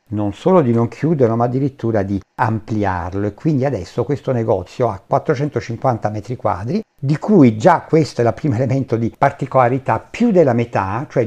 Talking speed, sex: 170 wpm, male